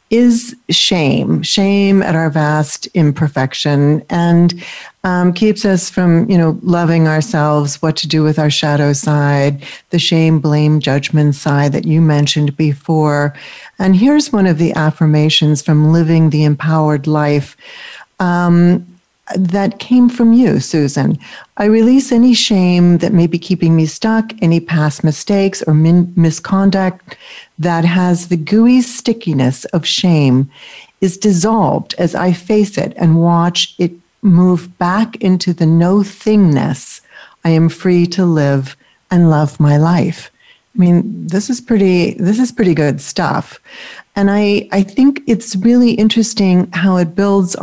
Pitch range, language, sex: 155-195 Hz, English, female